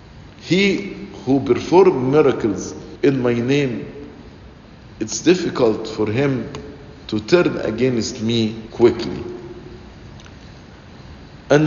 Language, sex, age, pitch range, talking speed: English, male, 50-69, 110-145 Hz, 85 wpm